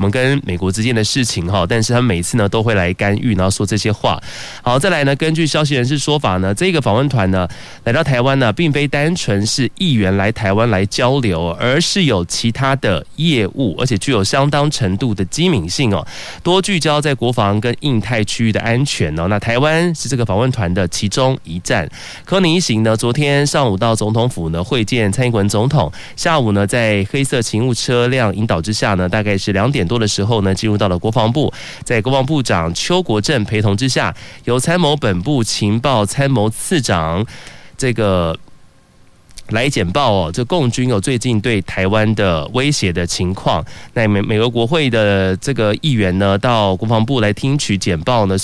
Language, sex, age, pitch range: Chinese, male, 20-39, 100-135 Hz